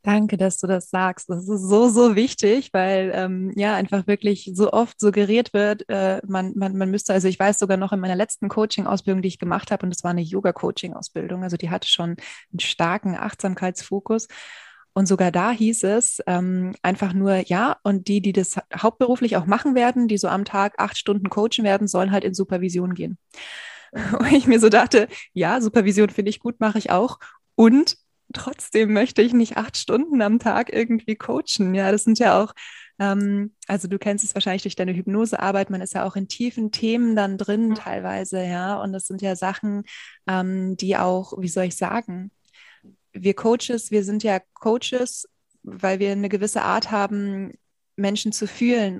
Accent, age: German, 20-39